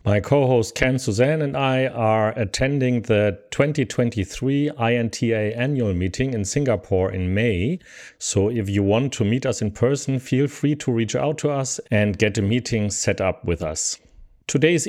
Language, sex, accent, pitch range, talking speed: English, male, German, 100-130 Hz, 170 wpm